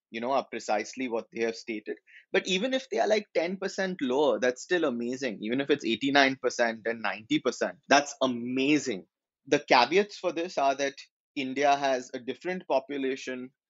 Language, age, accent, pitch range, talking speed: English, 30-49, Indian, 115-155 Hz, 165 wpm